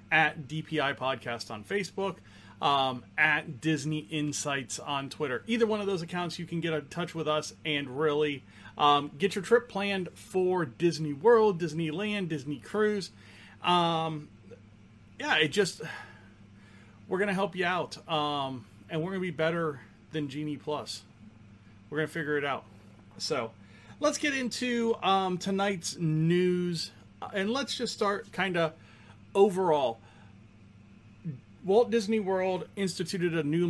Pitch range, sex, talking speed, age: 120-185 Hz, male, 145 wpm, 30-49